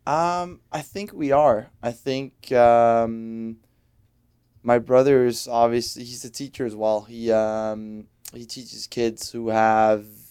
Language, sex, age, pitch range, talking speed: English, male, 20-39, 105-115 Hz, 140 wpm